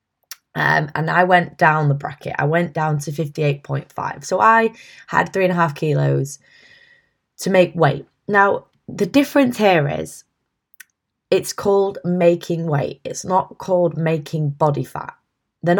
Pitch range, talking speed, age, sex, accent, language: 145-185 Hz, 150 wpm, 10-29, female, British, English